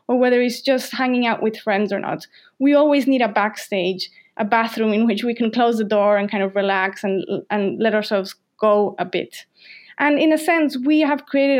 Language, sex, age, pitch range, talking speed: English, female, 20-39, 215-265 Hz, 215 wpm